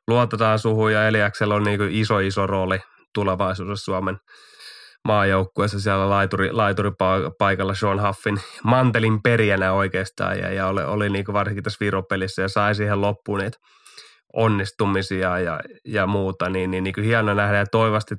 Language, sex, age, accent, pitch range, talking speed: Finnish, male, 20-39, native, 95-110 Hz, 140 wpm